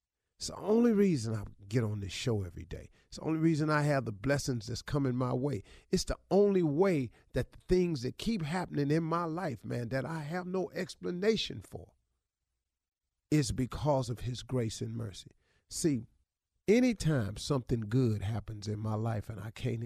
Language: English